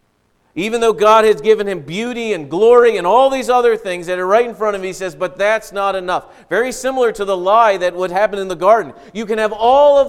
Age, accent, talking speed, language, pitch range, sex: 40-59, American, 255 wpm, English, 140-195 Hz, male